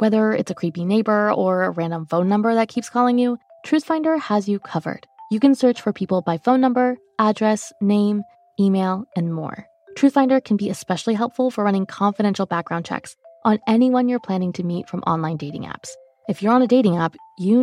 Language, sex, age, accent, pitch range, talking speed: English, female, 20-39, American, 180-245 Hz, 195 wpm